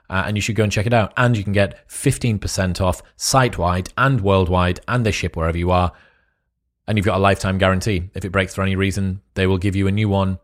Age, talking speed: 30-49, 245 wpm